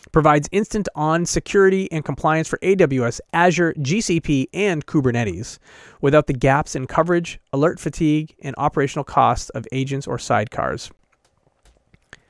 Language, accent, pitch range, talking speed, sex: English, American, 125-165 Hz, 120 wpm, male